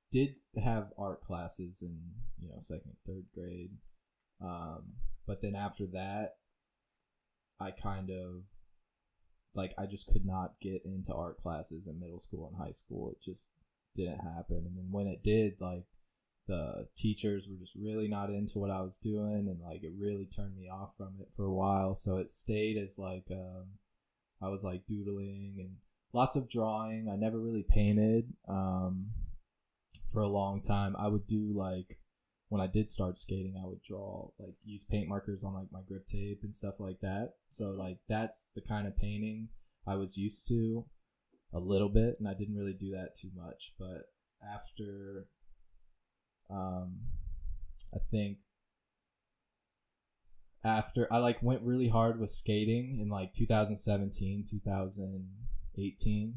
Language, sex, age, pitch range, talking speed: English, male, 20-39, 95-105 Hz, 165 wpm